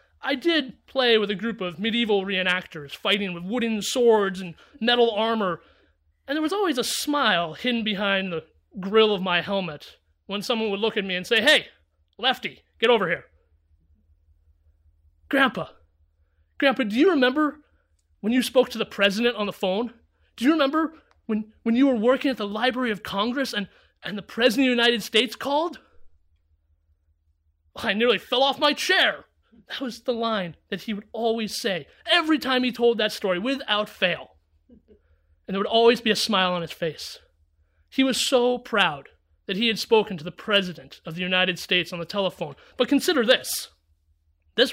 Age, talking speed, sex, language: 30-49, 180 wpm, male, English